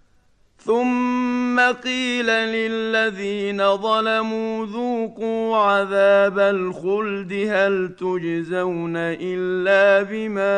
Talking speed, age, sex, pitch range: 60 wpm, 50-69, male, 185-210 Hz